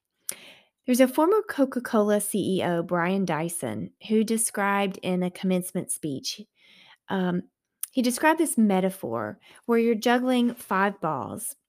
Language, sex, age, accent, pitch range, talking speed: English, female, 30-49, American, 180-240 Hz, 125 wpm